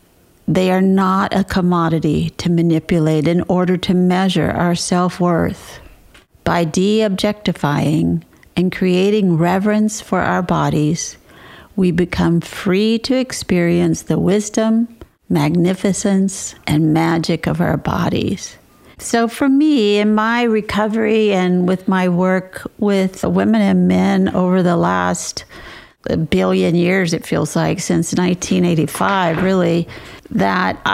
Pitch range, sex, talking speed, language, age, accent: 170-210 Hz, female, 120 wpm, English, 50-69, American